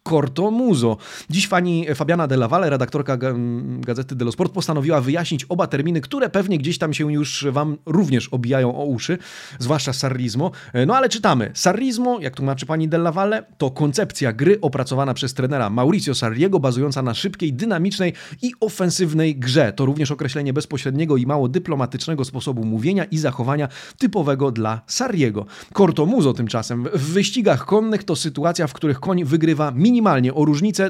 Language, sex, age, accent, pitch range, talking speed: Polish, male, 30-49, native, 130-185 Hz, 160 wpm